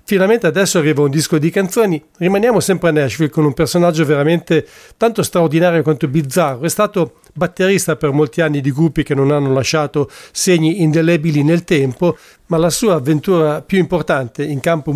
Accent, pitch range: Italian, 145-170 Hz